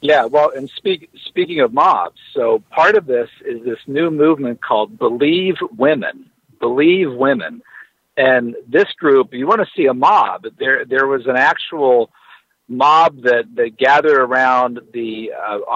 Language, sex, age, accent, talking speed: English, male, 50-69, American, 155 wpm